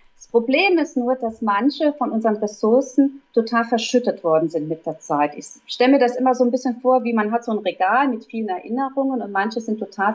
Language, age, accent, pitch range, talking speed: German, 30-49, German, 190-245 Hz, 225 wpm